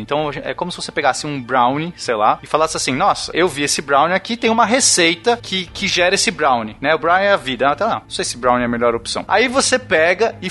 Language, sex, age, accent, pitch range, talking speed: Portuguese, male, 20-39, Brazilian, 155-230 Hz, 265 wpm